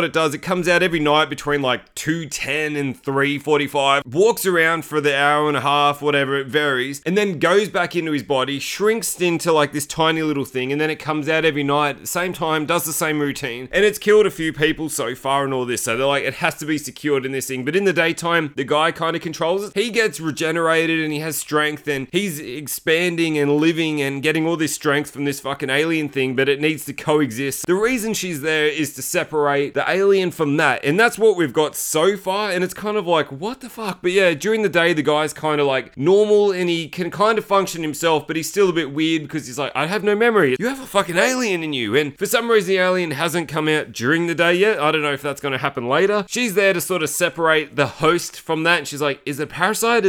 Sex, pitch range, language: male, 145-185 Hz, English